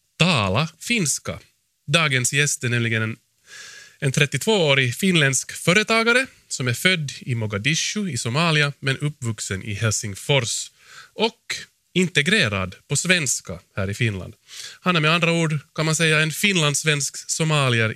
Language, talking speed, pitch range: Swedish, 135 wpm, 115-165 Hz